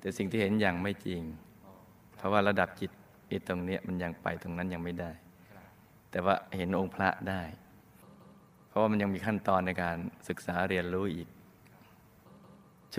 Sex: male